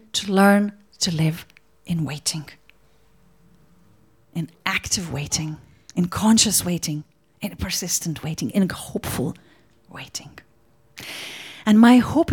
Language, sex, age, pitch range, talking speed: English, female, 40-59, 160-210 Hz, 100 wpm